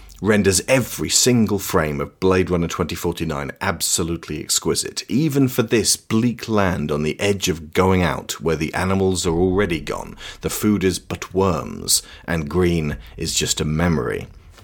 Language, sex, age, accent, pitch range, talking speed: English, male, 40-59, British, 80-95 Hz, 155 wpm